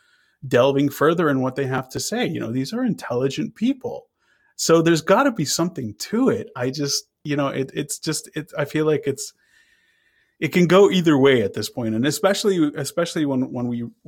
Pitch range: 115-160 Hz